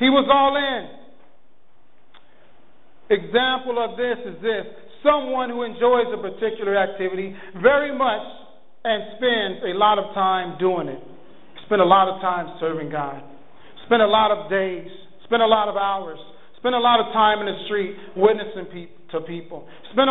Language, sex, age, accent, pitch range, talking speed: English, male, 40-59, American, 175-235 Hz, 165 wpm